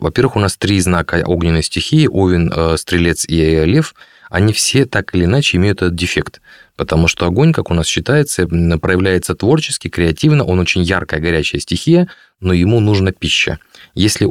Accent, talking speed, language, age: native, 165 wpm, Russian, 30-49